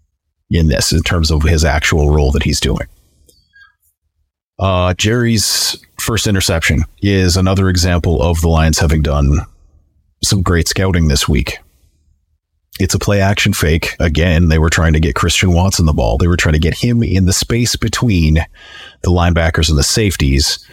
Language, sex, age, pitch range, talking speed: English, male, 30-49, 80-90 Hz, 170 wpm